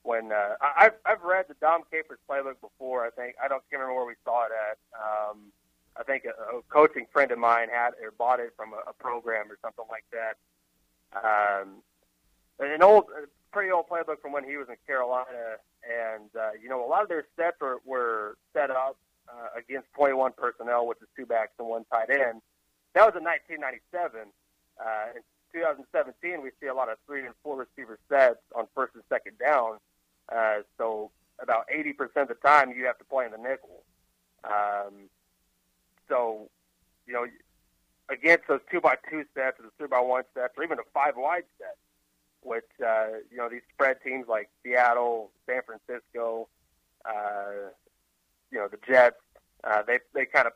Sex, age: male, 30-49